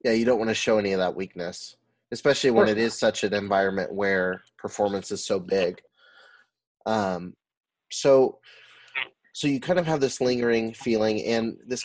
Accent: American